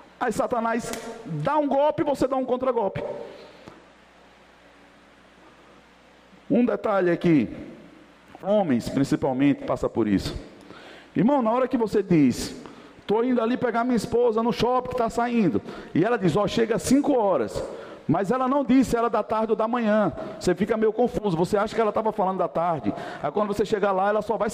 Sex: male